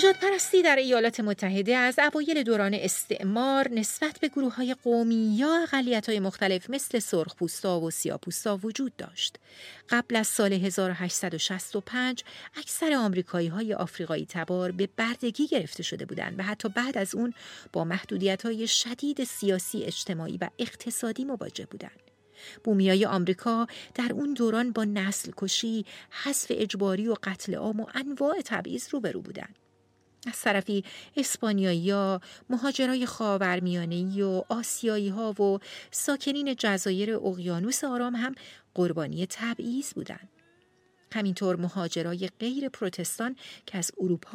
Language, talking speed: Persian, 130 wpm